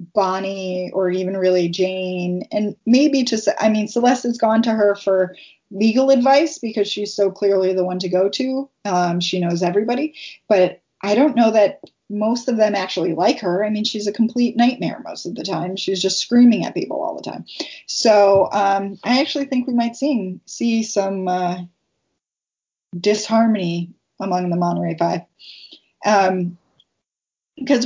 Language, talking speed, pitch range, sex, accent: English, 170 wpm, 180-230 Hz, female, American